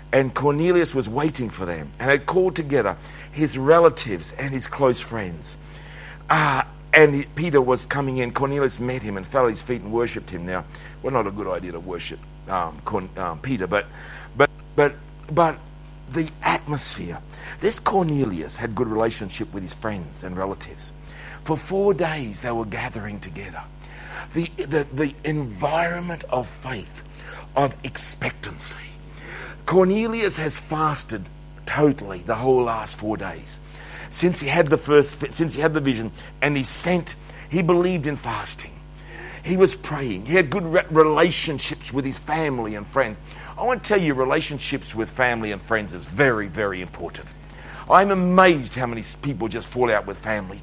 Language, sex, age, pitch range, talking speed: English, male, 60-79, 110-165 Hz, 165 wpm